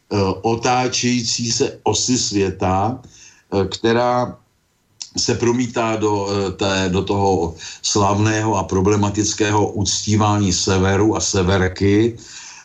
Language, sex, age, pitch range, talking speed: Slovak, male, 50-69, 100-120 Hz, 85 wpm